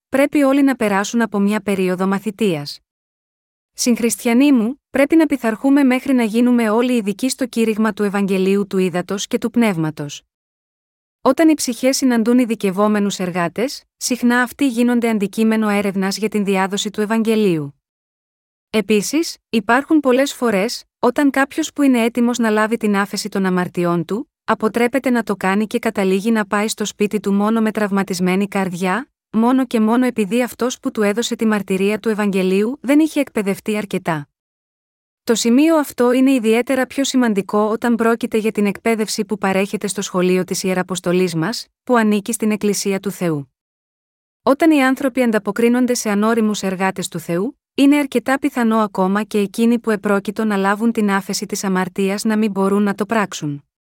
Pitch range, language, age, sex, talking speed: 200-245 Hz, Greek, 30-49, female, 160 wpm